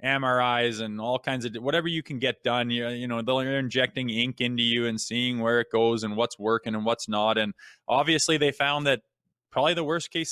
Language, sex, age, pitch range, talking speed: English, male, 20-39, 115-135 Hz, 220 wpm